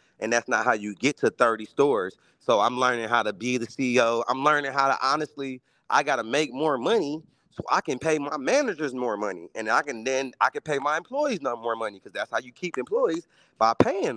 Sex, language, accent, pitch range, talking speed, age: male, English, American, 125-155 Hz, 235 wpm, 30-49